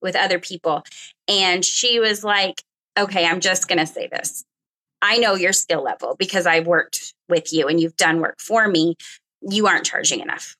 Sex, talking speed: female, 190 wpm